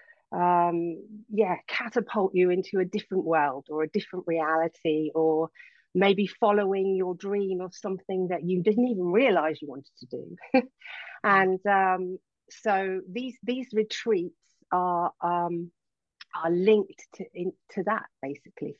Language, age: English, 40-59